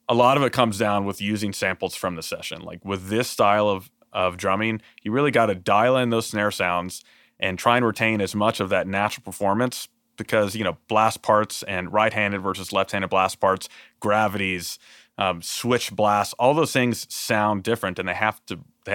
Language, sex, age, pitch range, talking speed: English, male, 30-49, 90-110 Hz, 190 wpm